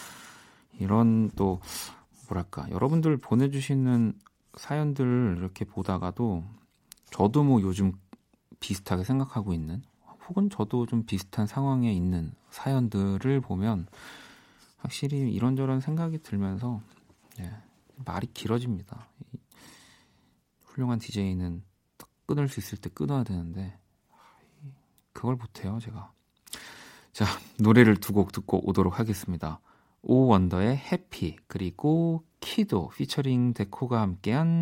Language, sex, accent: Korean, male, native